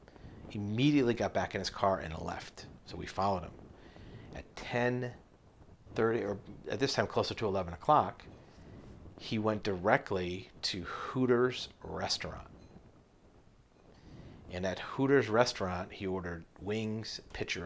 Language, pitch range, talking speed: English, 95-110 Hz, 130 wpm